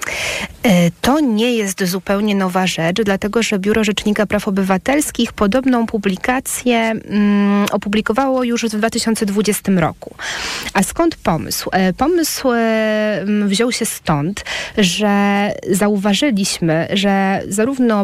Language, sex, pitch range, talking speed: Polish, female, 185-225 Hz, 100 wpm